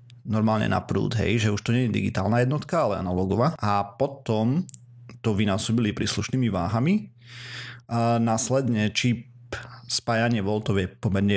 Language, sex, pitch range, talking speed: Slovak, male, 100-120 Hz, 135 wpm